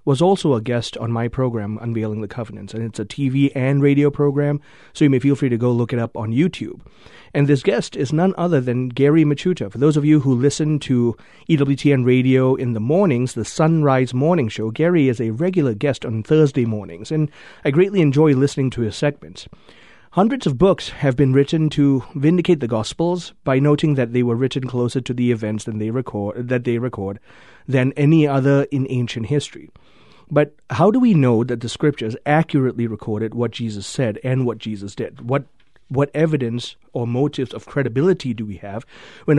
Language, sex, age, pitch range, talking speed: English, male, 30-49, 120-150 Hz, 200 wpm